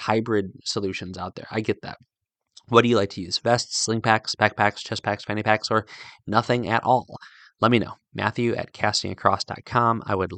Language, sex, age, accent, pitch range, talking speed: English, male, 20-39, American, 95-115 Hz, 190 wpm